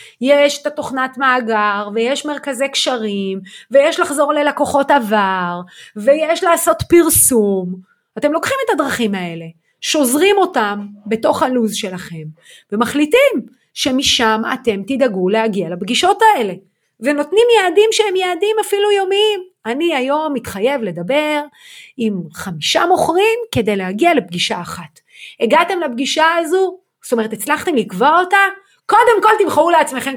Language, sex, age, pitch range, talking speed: Hebrew, female, 30-49, 220-355 Hz, 120 wpm